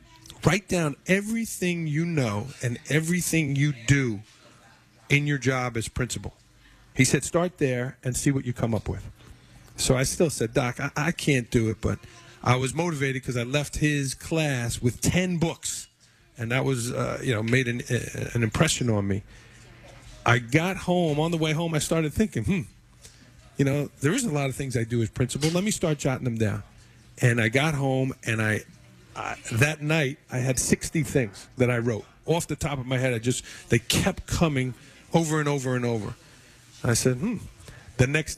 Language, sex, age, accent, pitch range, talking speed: English, male, 40-59, American, 120-155 Hz, 195 wpm